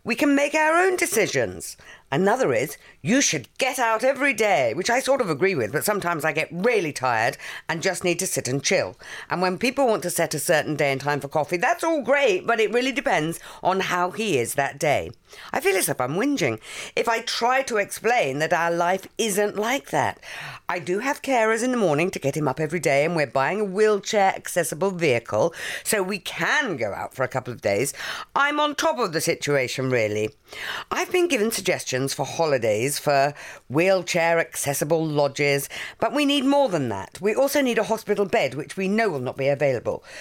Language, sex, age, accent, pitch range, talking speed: English, female, 50-69, British, 165-265 Hz, 210 wpm